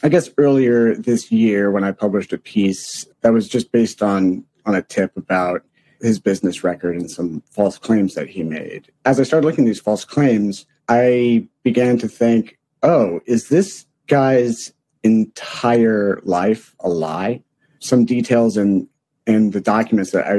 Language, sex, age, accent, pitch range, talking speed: English, male, 40-59, American, 100-120 Hz, 170 wpm